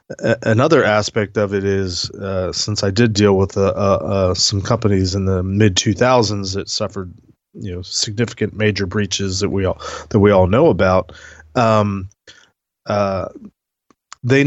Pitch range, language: 95-110 Hz, English